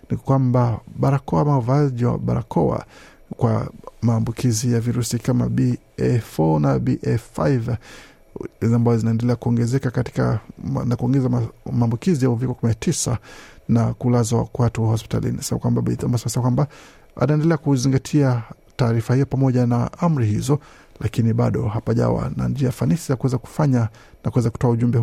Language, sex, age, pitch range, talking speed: Swahili, male, 50-69, 115-135 Hz, 115 wpm